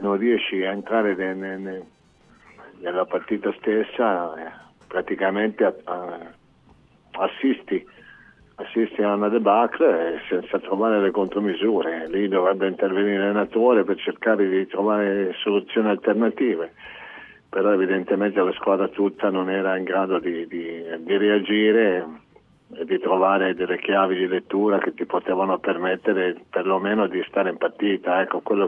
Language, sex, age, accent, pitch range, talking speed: Italian, male, 50-69, native, 95-105 Hz, 120 wpm